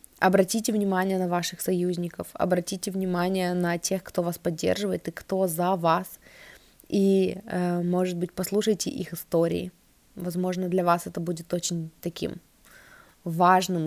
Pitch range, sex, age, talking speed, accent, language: 175-205 Hz, female, 20-39, 130 wpm, native, Russian